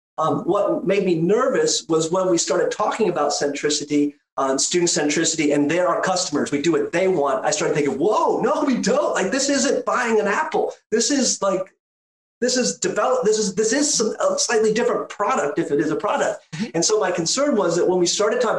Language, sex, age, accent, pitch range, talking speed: English, male, 30-49, American, 170-220 Hz, 215 wpm